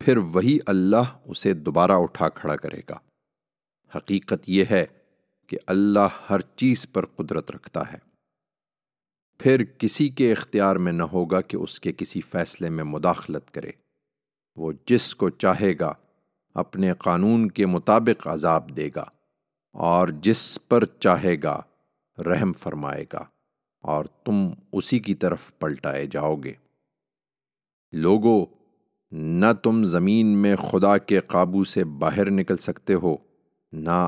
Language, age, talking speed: English, 50-69, 135 wpm